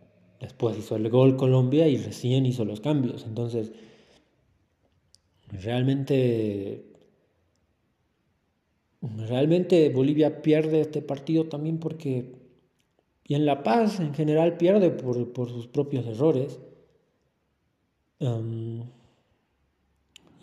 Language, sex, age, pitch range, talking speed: Spanish, male, 40-59, 110-130 Hz, 95 wpm